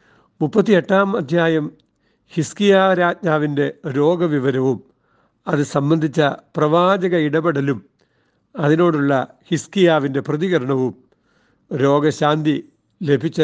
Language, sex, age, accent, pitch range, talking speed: Malayalam, male, 60-79, native, 135-170 Hz, 60 wpm